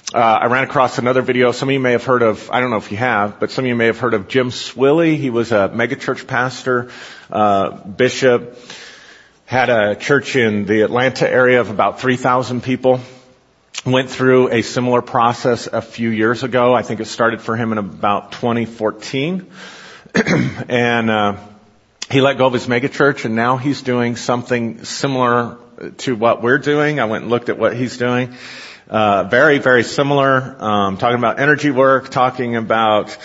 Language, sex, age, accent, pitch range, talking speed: English, male, 40-59, American, 115-135 Hz, 185 wpm